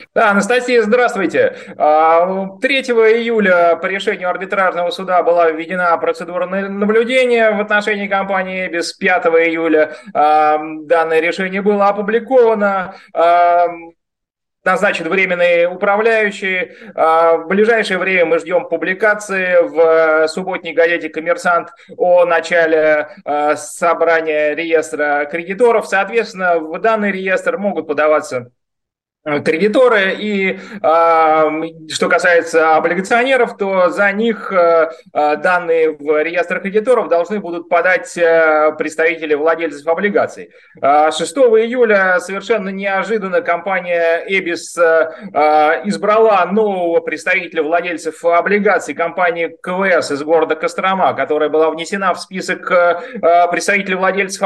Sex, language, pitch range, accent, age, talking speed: male, Russian, 165-200 Hz, native, 20-39, 95 wpm